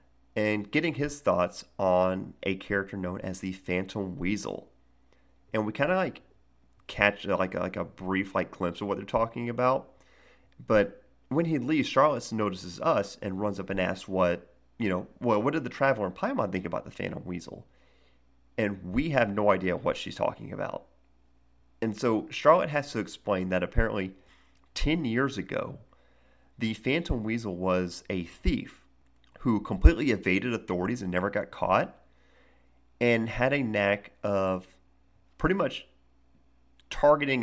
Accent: American